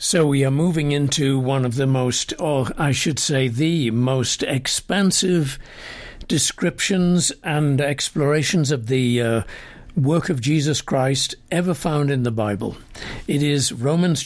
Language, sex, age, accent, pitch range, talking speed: English, male, 60-79, British, 130-155 Hz, 145 wpm